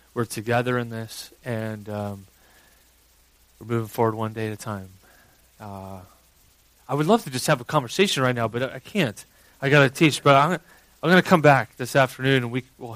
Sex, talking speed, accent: male, 200 wpm, American